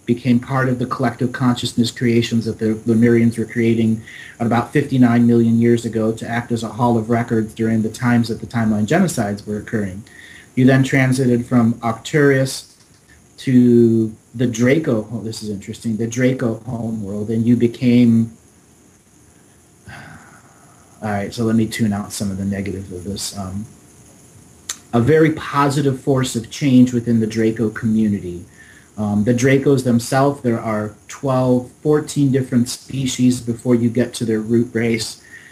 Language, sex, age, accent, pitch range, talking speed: English, male, 30-49, American, 110-130 Hz, 155 wpm